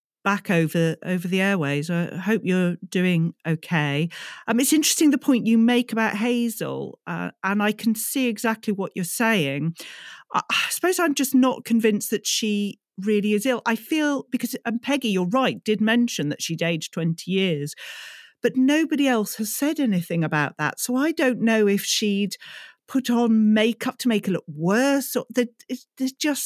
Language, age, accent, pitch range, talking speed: English, 40-59, British, 180-240 Hz, 175 wpm